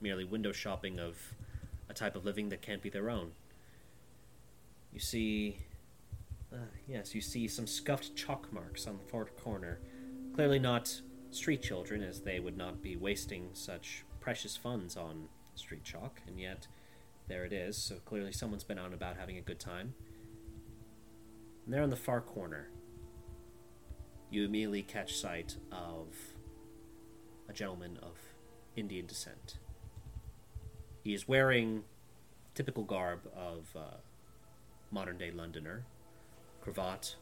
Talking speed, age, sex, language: 140 wpm, 30-49, male, English